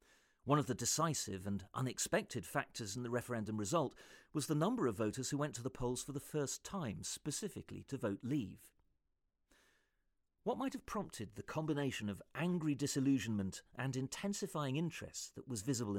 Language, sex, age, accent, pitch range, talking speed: English, male, 40-59, British, 105-145 Hz, 165 wpm